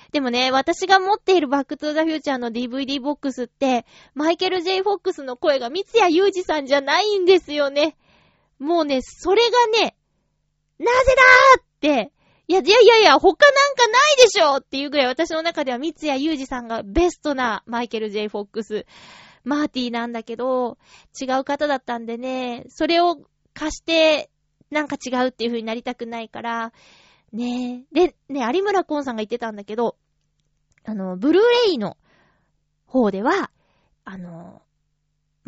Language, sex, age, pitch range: Japanese, female, 20-39, 235-365 Hz